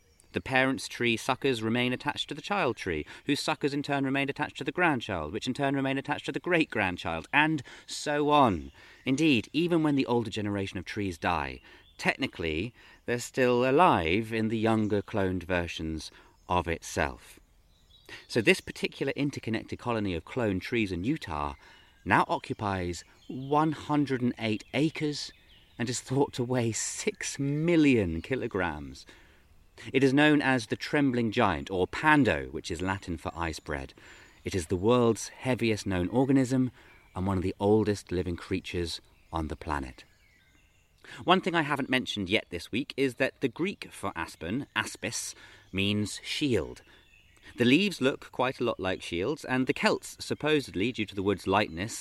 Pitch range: 90-130 Hz